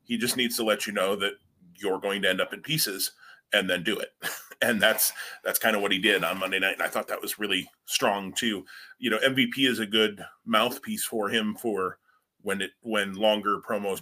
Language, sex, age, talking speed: English, male, 30-49, 225 wpm